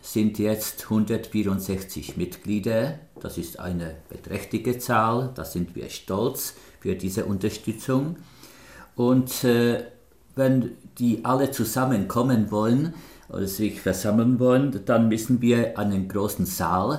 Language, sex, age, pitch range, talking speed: Czech, male, 50-69, 95-120 Hz, 115 wpm